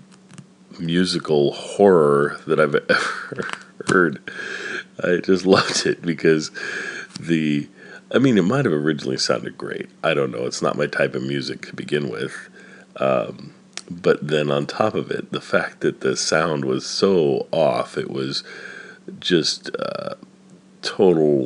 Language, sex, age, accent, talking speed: English, male, 40-59, American, 145 wpm